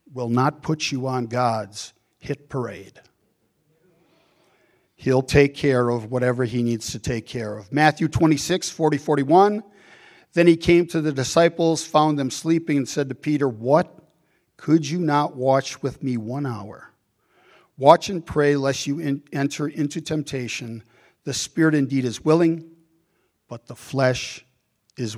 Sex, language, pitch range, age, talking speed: male, English, 125-160 Hz, 50-69, 150 wpm